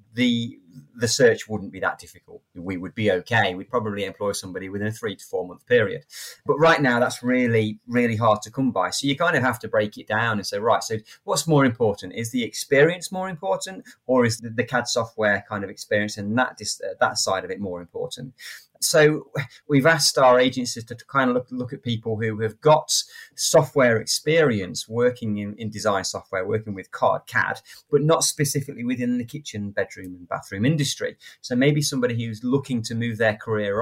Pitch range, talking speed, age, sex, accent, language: 105-130 Hz, 200 wpm, 30-49, male, British, English